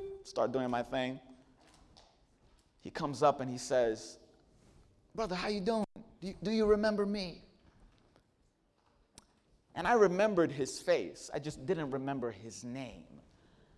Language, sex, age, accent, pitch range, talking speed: English, male, 30-49, American, 135-185 Hz, 130 wpm